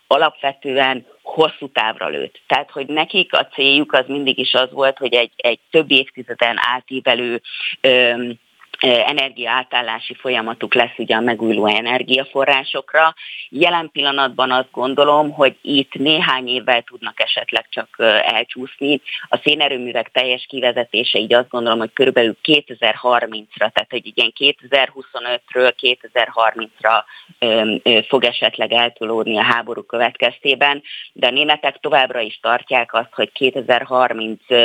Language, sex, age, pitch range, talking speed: Hungarian, female, 30-49, 120-140 Hz, 120 wpm